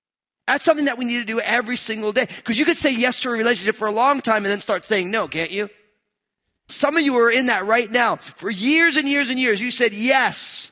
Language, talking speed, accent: English, 260 wpm, American